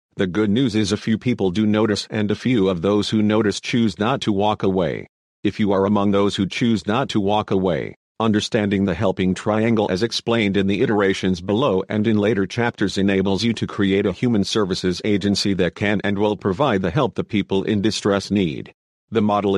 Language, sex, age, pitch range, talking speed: English, male, 50-69, 95-110 Hz, 210 wpm